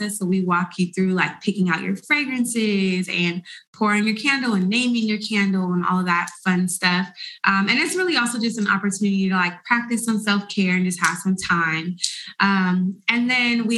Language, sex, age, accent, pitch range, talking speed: English, female, 20-39, American, 185-230 Hz, 200 wpm